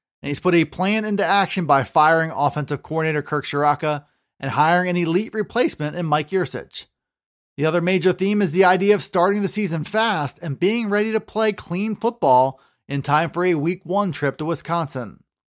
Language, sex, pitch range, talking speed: English, male, 155-195 Hz, 190 wpm